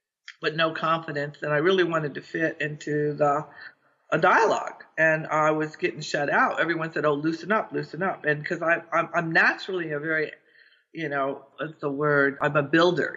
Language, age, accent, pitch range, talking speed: English, 50-69, American, 145-180 Hz, 190 wpm